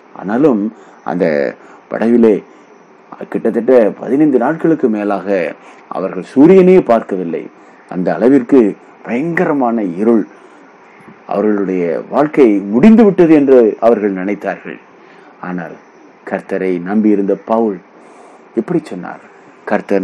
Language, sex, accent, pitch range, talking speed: Tamil, male, native, 100-140 Hz, 85 wpm